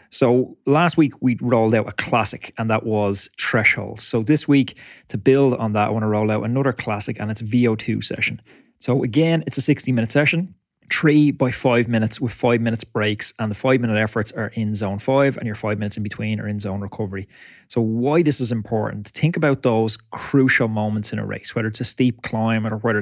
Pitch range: 110-130 Hz